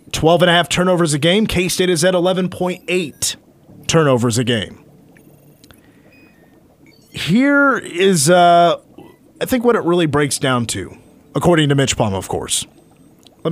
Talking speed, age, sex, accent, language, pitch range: 130 wpm, 30-49, male, American, English, 135-175 Hz